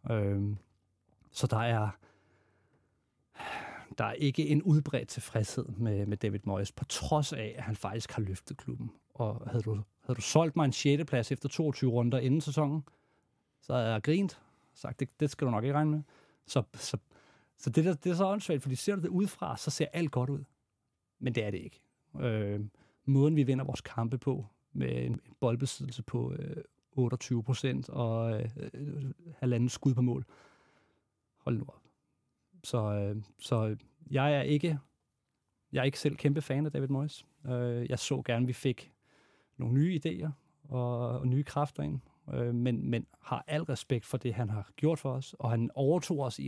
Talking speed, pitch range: 190 wpm, 115-145 Hz